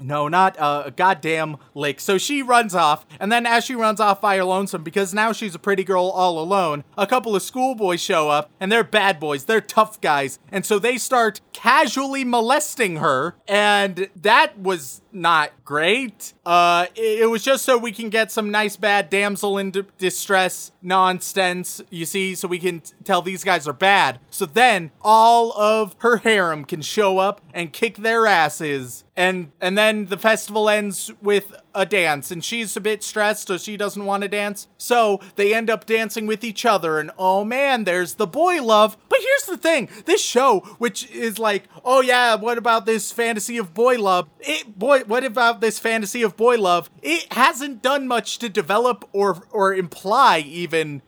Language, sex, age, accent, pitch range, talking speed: English, male, 30-49, American, 185-235 Hz, 190 wpm